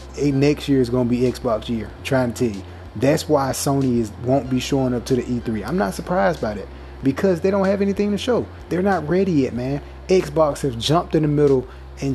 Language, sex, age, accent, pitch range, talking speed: English, male, 20-39, American, 120-150 Hz, 230 wpm